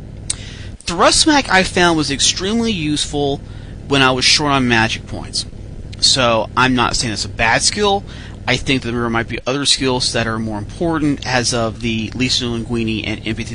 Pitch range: 105-145 Hz